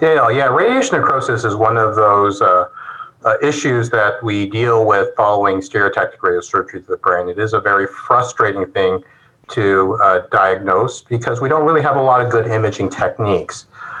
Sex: male